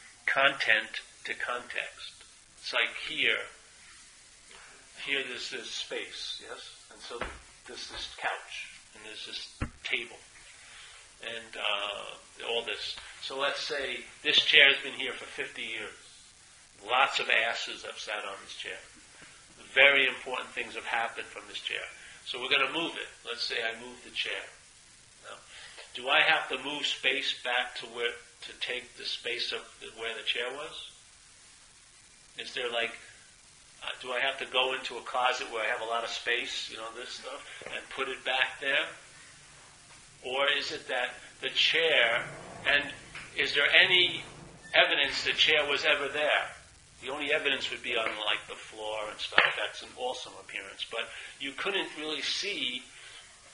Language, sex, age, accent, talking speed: English, male, 50-69, American, 165 wpm